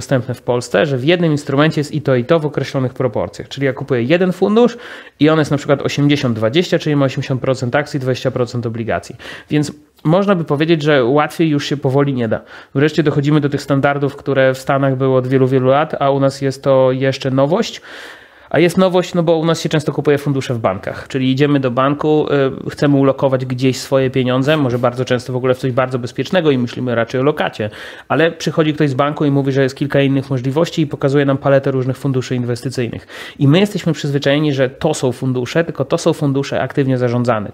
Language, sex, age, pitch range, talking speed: Polish, male, 30-49, 130-150 Hz, 210 wpm